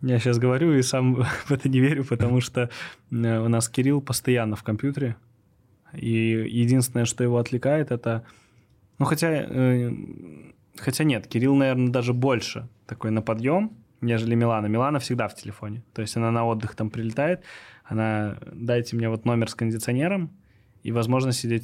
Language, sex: Russian, male